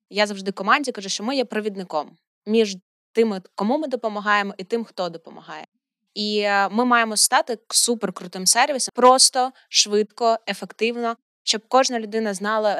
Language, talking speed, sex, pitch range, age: Ukrainian, 140 wpm, female, 190-230 Hz, 20-39